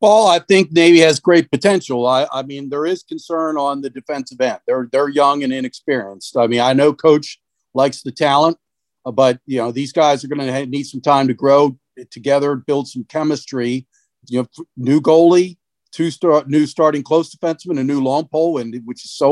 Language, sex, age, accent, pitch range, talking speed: English, male, 50-69, American, 125-150 Hz, 200 wpm